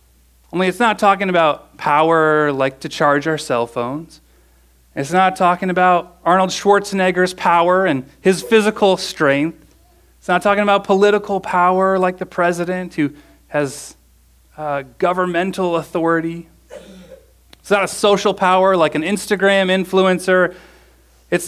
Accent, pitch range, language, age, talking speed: American, 140-190 Hz, English, 30-49, 130 wpm